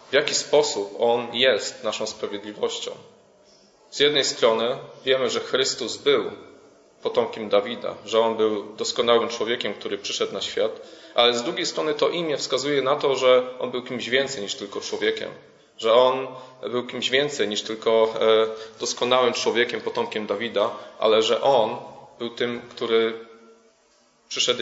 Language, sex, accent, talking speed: Polish, male, native, 145 wpm